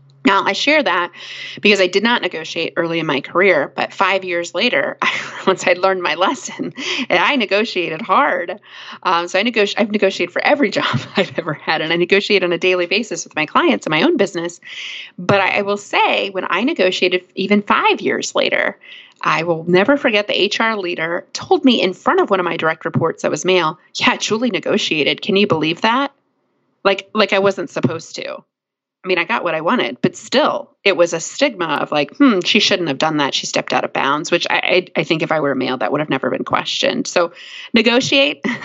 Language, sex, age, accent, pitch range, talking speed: English, female, 30-49, American, 175-225 Hz, 220 wpm